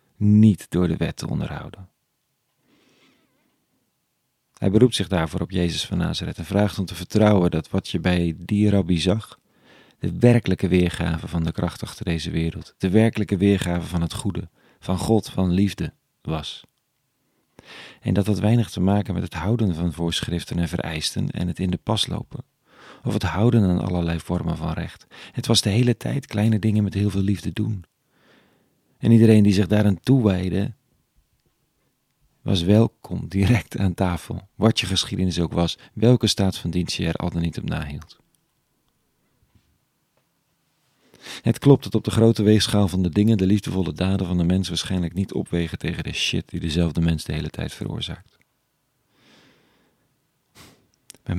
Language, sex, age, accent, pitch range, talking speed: Dutch, male, 40-59, Dutch, 85-105 Hz, 165 wpm